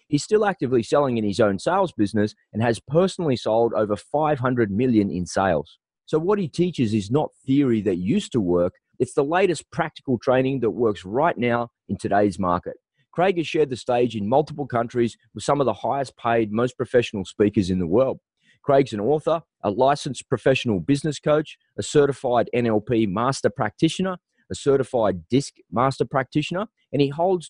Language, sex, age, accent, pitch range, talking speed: English, male, 30-49, Australian, 110-150 Hz, 175 wpm